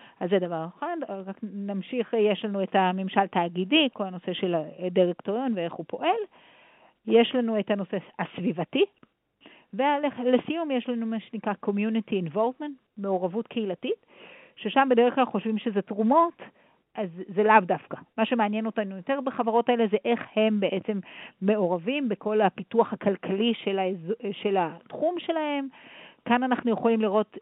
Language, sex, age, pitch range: Hebrew, female, 50-69, 190-235 Hz